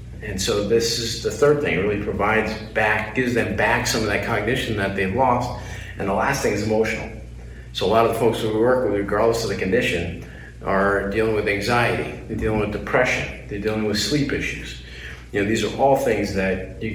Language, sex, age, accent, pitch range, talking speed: English, male, 40-59, American, 95-110 Hz, 215 wpm